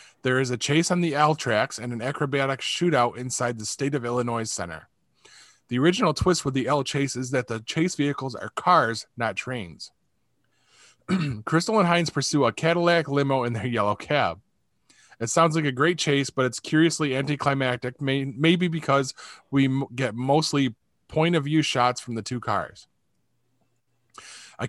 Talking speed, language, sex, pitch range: 170 wpm, English, male, 120-145 Hz